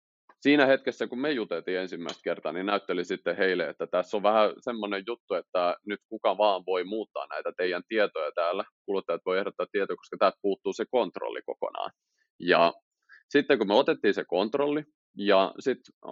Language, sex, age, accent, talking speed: Finnish, male, 30-49, native, 170 wpm